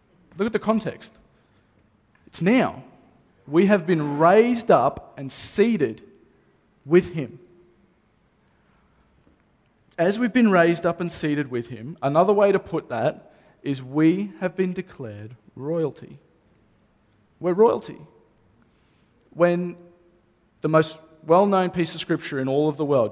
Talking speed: 125 wpm